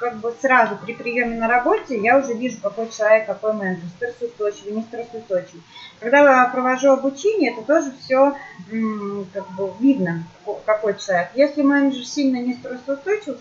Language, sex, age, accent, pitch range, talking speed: Russian, female, 30-49, native, 205-280 Hz, 155 wpm